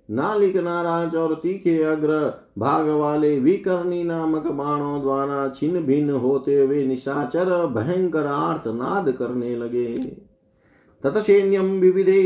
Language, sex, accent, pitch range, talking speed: Hindi, male, native, 135-175 Hz, 100 wpm